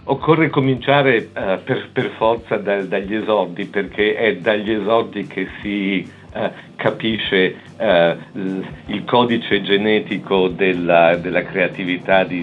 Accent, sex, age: native, male, 50-69